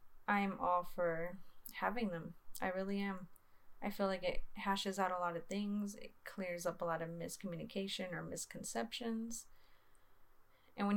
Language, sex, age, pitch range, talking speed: English, female, 20-39, 170-205 Hz, 165 wpm